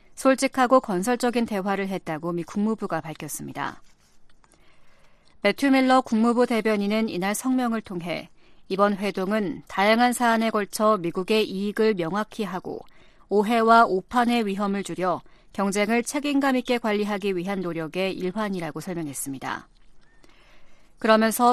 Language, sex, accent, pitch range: Korean, female, native, 185-235 Hz